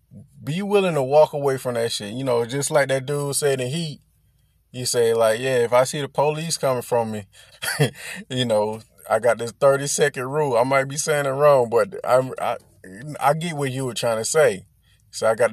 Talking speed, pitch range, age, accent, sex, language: 225 wpm, 120-155 Hz, 20-39, American, male, English